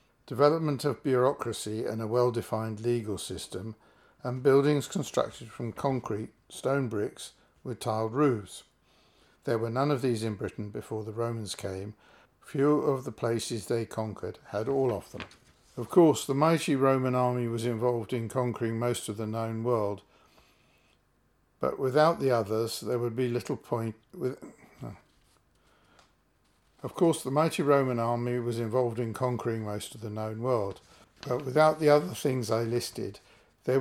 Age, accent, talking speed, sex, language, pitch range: 60-79, British, 155 wpm, male, English, 110-130 Hz